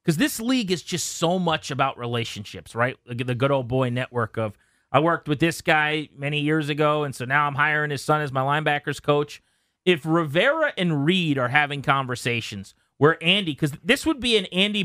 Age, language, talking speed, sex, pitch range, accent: 30-49, English, 200 wpm, male, 125-175 Hz, American